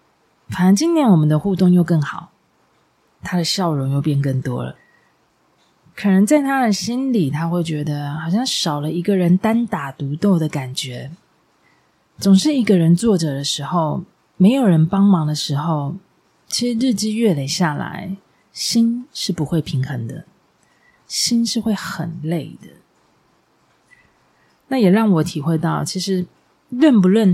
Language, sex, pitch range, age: Chinese, female, 155-215 Hz, 30-49